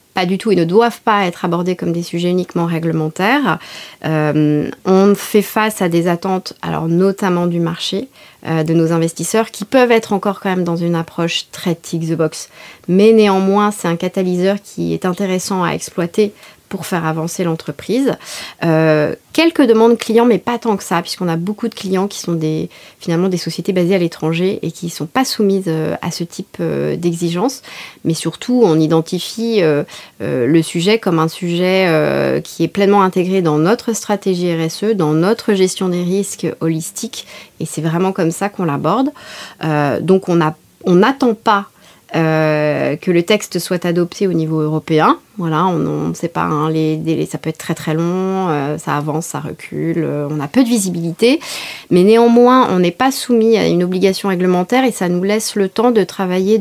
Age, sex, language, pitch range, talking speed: 30-49, female, French, 165-205 Hz, 180 wpm